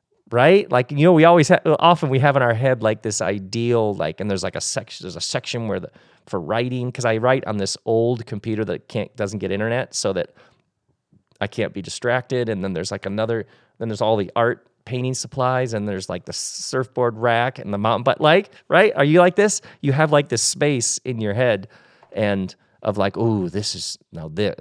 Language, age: English, 30-49